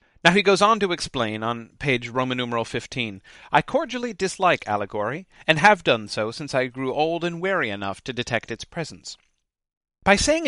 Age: 40-59